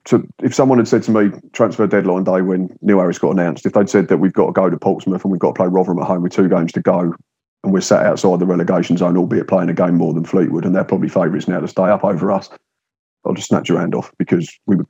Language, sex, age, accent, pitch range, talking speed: English, male, 30-49, British, 90-100 Hz, 285 wpm